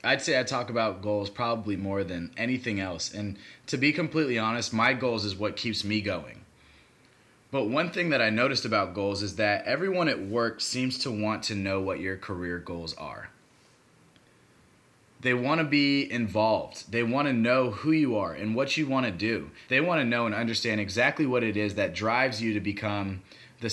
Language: English